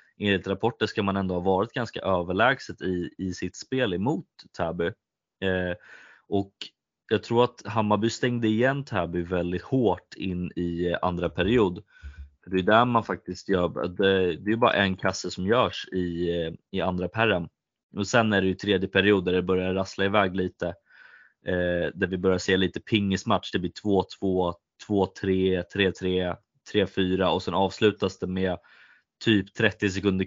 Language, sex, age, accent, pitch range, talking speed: Swedish, male, 20-39, native, 90-100 Hz, 165 wpm